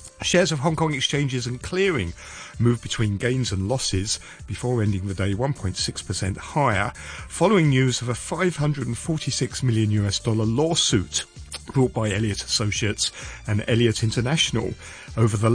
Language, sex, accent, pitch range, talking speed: English, male, British, 100-135 Hz, 140 wpm